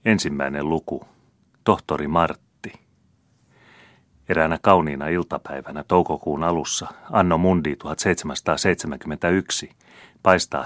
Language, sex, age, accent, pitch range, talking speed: Finnish, male, 30-49, native, 75-85 Hz, 75 wpm